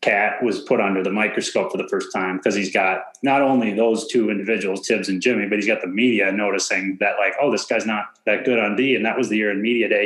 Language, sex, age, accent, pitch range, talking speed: English, male, 30-49, American, 100-115 Hz, 270 wpm